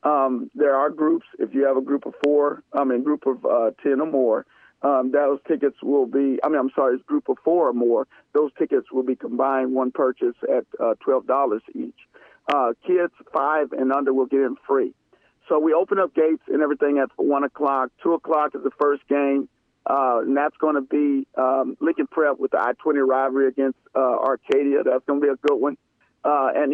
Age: 50-69